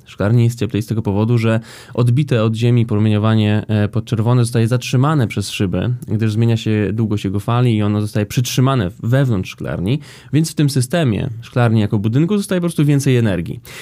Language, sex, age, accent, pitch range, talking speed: Polish, male, 20-39, native, 110-130 Hz, 175 wpm